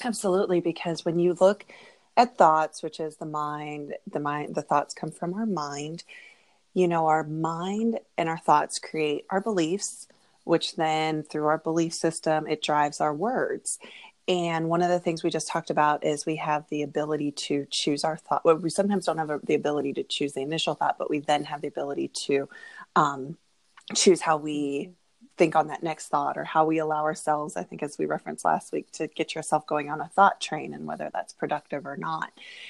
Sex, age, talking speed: female, 20-39, 205 wpm